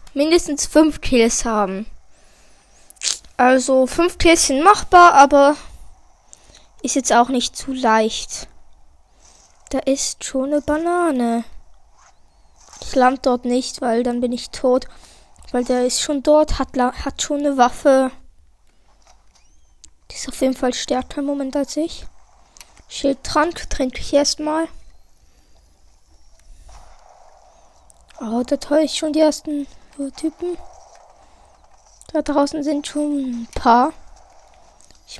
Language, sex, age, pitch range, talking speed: German, female, 20-39, 250-300 Hz, 115 wpm